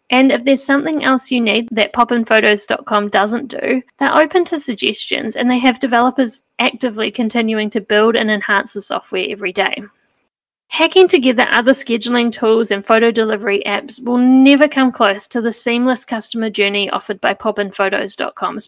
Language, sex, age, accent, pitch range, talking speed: English, female, 10-29, Australian, 215-270 Hz, 160 wpm